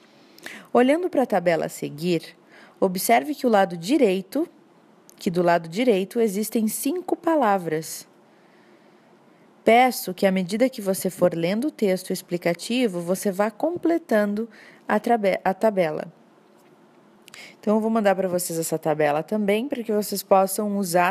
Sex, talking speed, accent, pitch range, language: female, 130 wpm, Brazilian, 180-220 Hz, Portuguese